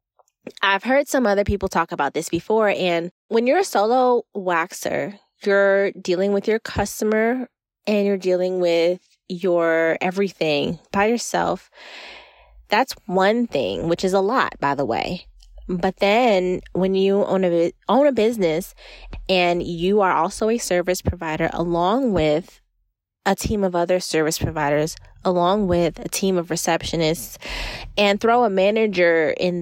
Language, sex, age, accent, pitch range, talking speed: English, female, 20-39, American, 170-220 Hz, 145 wpm